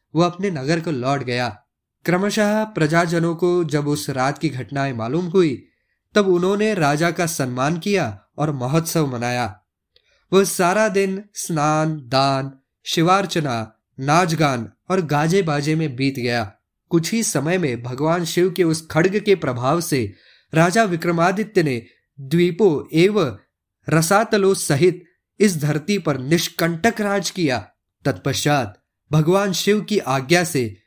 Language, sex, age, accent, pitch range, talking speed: Hindi, male, 20-39, native, 115-175 Hz, 135 wpm